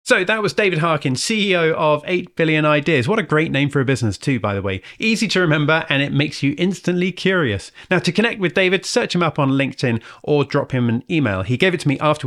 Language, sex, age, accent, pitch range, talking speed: English, male, 30-49, British, 135-180 Hz, 250 wpm